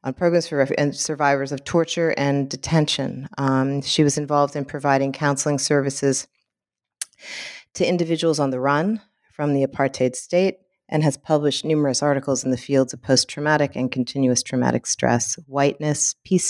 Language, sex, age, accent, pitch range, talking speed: English, female, 40-59, American, 130-150 Hz, 150 wpm